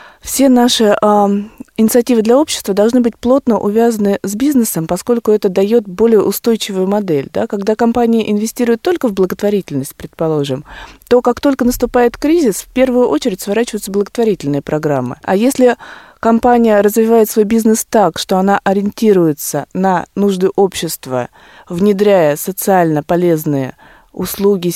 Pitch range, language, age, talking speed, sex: 170-220 Hz, Russian, 20-39, 130 wpm, female